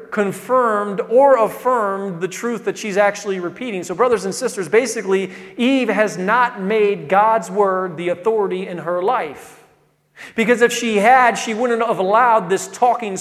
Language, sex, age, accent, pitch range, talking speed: English, male, 40-59, American, 175-210 Hz, 160 wpm